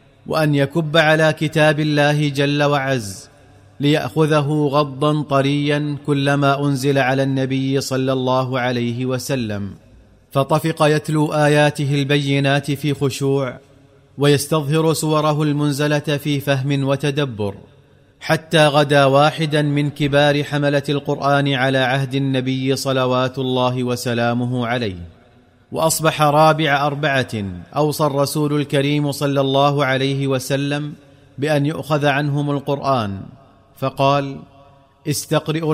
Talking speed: 100 wpm